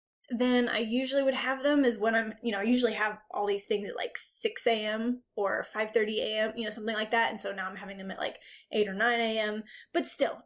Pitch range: 215-265 Hz